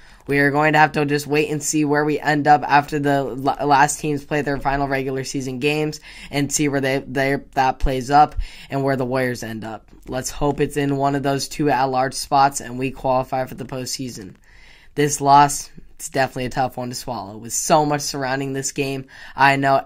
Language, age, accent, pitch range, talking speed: English, 10-29, American, 130-150 Hz, 215 wpm